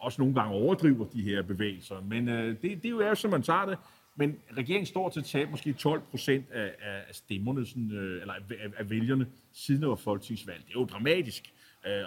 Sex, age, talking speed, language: male, 30-49, 210 wpm, Danish